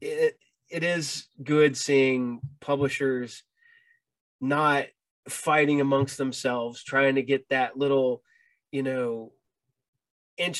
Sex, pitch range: male, 130-160 Hz